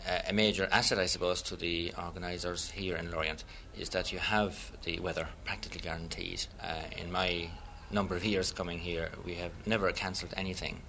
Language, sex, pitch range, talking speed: English, male, 85-95 Hz, 180 wpm